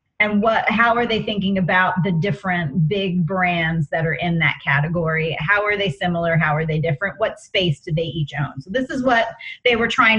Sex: female